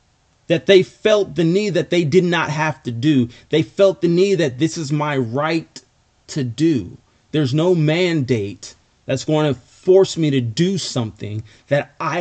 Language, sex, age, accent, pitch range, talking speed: English, male, 30-49, American, 115-185 Hz, 175 wpm